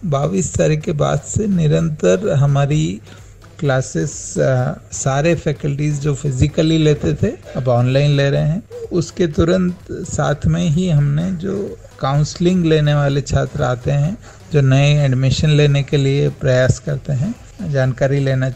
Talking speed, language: 140 wpm, Hindi